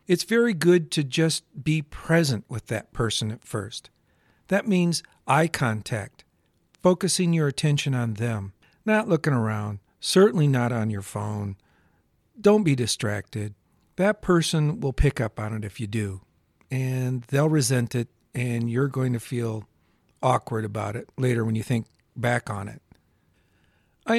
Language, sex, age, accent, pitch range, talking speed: English, male, 50-69, American, 115-160 Hz, 155 wpm